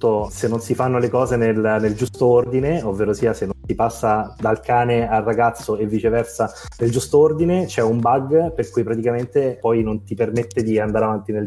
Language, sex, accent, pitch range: Italian, male, native, 115-140 Hz